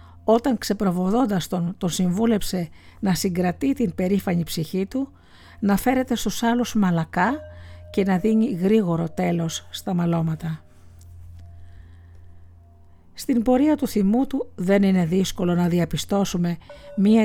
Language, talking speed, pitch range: Greek, 120 wpm, 155-215 Hz